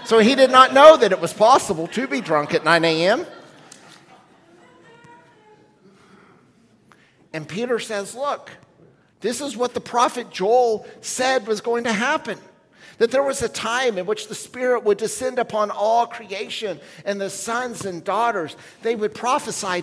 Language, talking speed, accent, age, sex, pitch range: English, 155 wpm, American, 50-69, male, 170-230 Hz